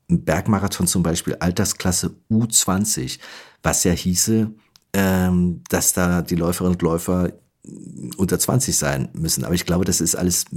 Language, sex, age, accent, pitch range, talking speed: German, male, 50-69, German, 80-100 Hz, 135 wpm